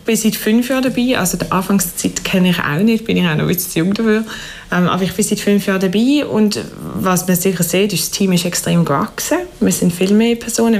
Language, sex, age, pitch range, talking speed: German, female, 20-39, 175-215 Hz, 255 wpm